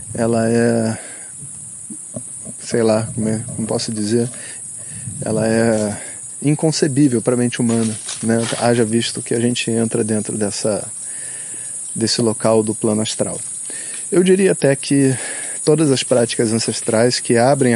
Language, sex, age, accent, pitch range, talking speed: Portuguese, male, 20-39, Brazilian, 110-125 Hz, 130 wpm